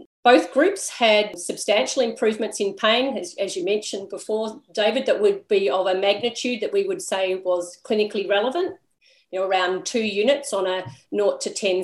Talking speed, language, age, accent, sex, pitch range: 180 wpm, English, 40-59, Australian, female, 185-220 Hz